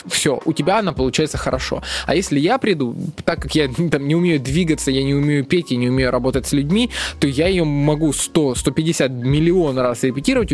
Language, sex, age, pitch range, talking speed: Russian, male, 20-39, 130-170 Hz, 200 wpm